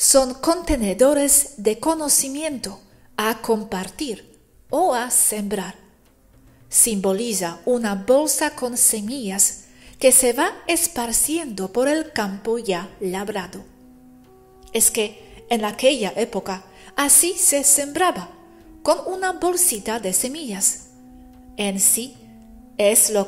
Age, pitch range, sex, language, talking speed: 40-59, 195-275 Hz, female, Spanish, 105 wpm